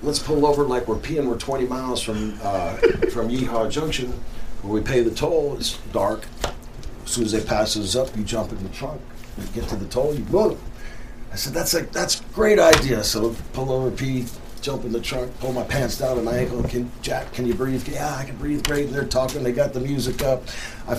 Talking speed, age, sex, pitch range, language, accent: 235 wpm, 40-59, male, 115-140 Hz, English, American